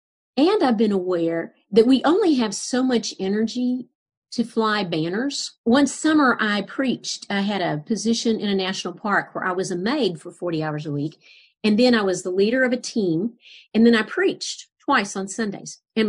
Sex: female